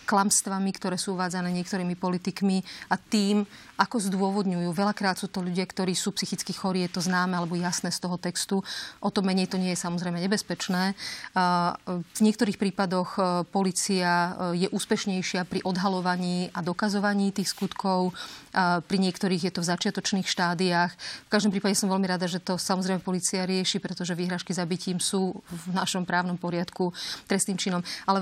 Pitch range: 180-200 Hz